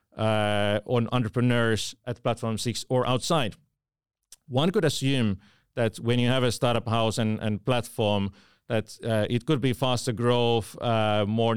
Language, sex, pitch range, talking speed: Finnish, male, 110-130 Hz, 155 wpm